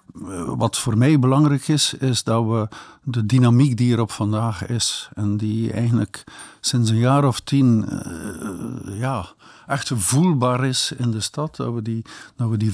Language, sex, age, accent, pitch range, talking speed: Dutch, male, 50-69, Dutch, 110-135 Hz, 160 wpm